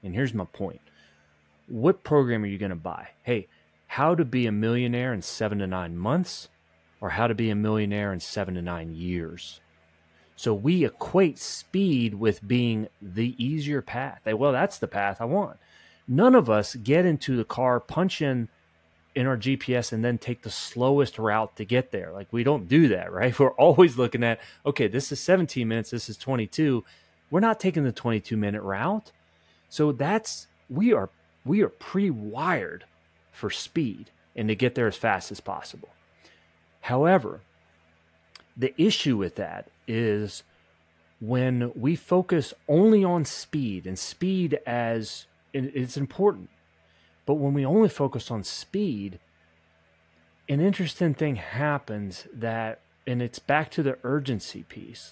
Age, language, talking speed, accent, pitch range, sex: 30-49, English, 160 wpm, American, 90-140 Hz, male